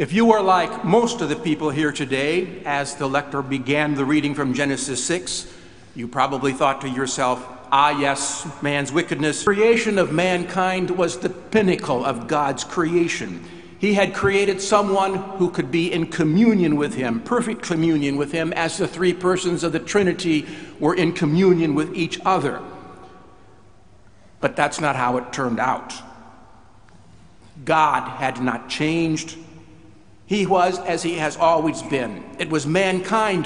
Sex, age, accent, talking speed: male, 60-79, American, 155 wpm